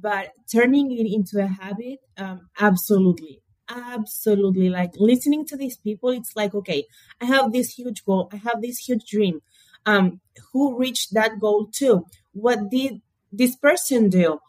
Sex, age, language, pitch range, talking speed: female, 30-49, English, 190-245 Hz, 155 wpm